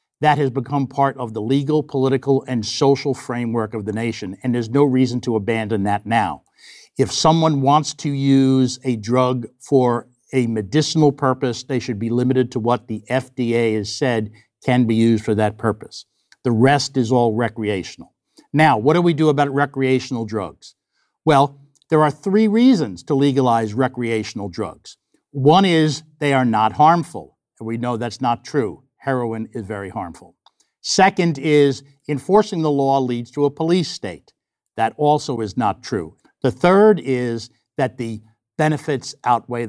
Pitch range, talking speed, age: 120-145 Hz, 165 wpm, 60-79